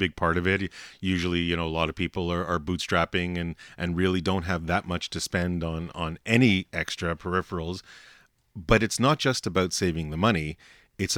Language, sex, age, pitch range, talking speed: English, male, 30-49, 85-105 Hz, 200 wpm